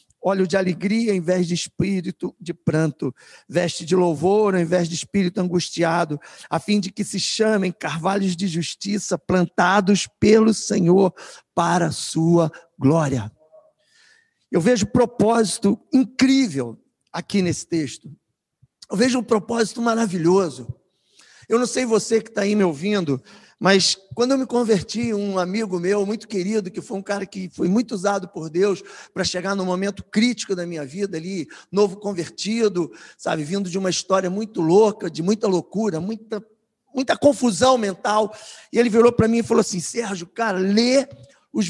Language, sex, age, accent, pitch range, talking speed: Portuguese, male, 50-69, Brazilian, 180-235 Hz, 160 wpm